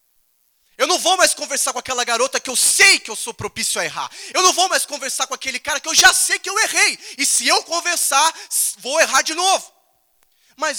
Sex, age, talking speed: male, 20-39, 230 wpm